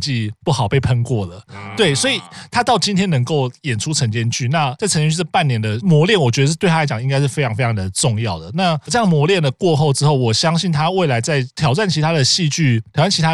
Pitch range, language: 120-165 Hz, Chinese